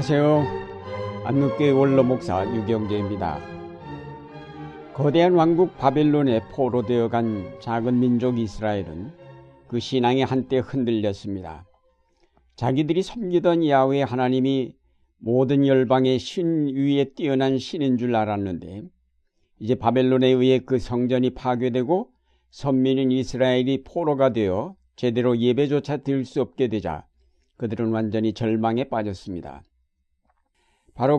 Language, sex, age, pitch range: Korean, male, 60-79, 105-140 Hz